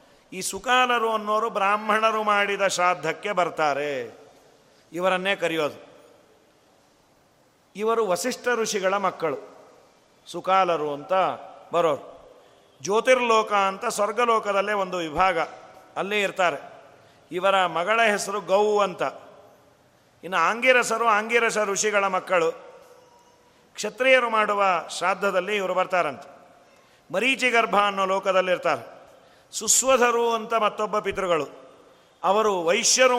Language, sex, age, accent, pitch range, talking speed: Kannada, male, 40-59, native, 180-220 Hz, 90 wpm